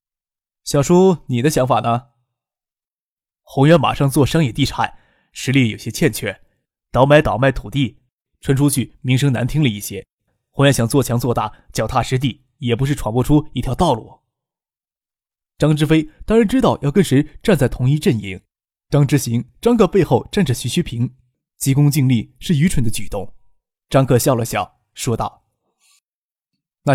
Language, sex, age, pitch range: Chinese, male, 20-39, 120-155 Hz